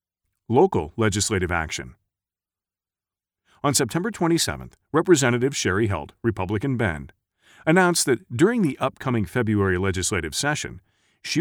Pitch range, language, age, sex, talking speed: 95-135 Hz, English, 40-59, male, 105 wpm